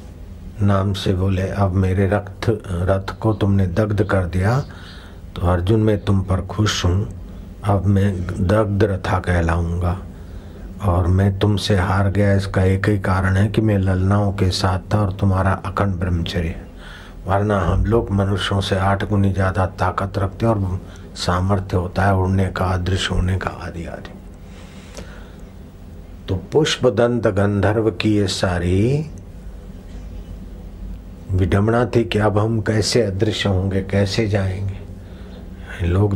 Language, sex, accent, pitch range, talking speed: Hindi, male, native, 90-100 Hz, 140 wpm